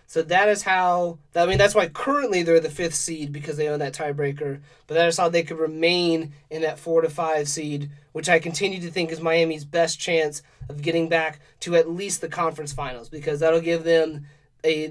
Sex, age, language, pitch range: male, 30-49, English, 150-175 Hz